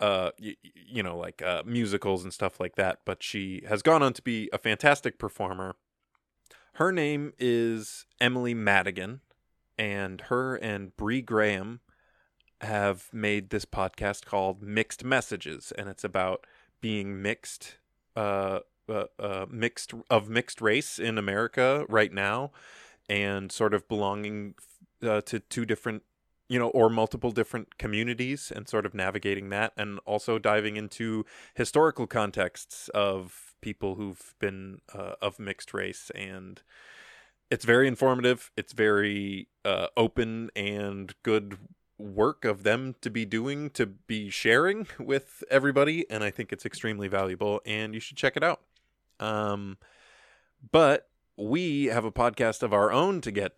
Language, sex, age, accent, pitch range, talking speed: English, male, 20-39, American, 100-120 Hz, 145 wpm